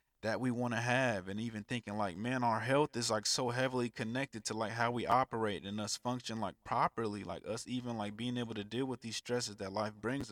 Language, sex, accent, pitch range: English, male, American, 105-130 Hz